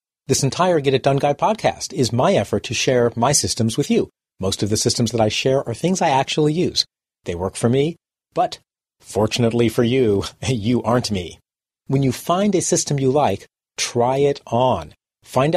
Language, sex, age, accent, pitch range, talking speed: English, male, 40-59, American, 110-145 Hz, 195 wpm